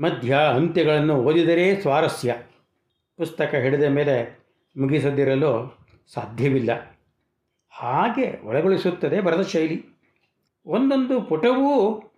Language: Kannada